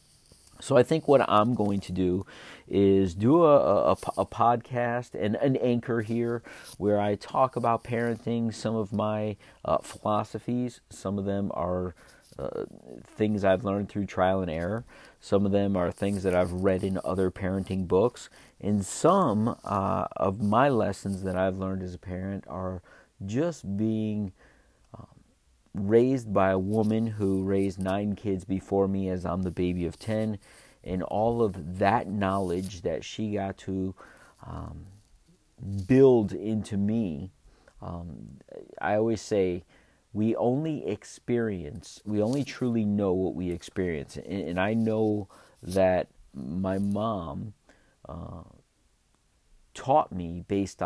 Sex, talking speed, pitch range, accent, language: male, 145 wpm, 95-110 Hz, American, English